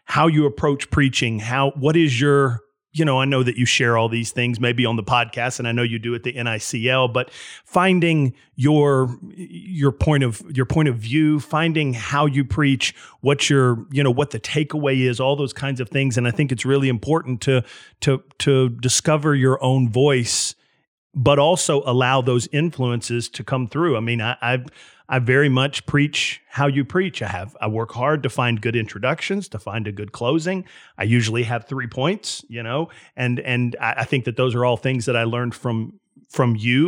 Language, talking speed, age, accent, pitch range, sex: English, 205 wpm, 40-59, American, 120-145 Hz, male